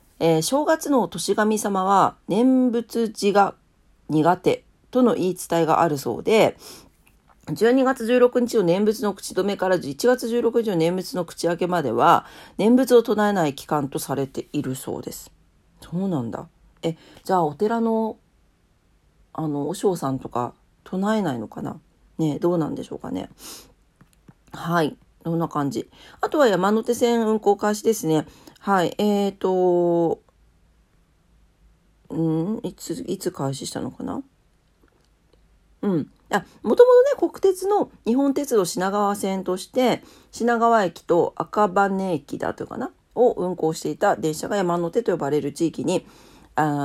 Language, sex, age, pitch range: Japanese, female, 40-59, 160-230 Hz